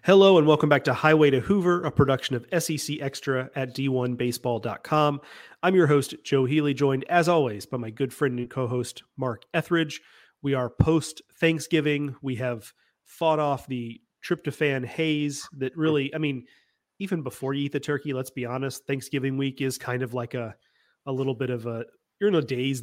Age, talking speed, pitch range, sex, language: 30-49, 185 wpm, 130-155 Hz, male, English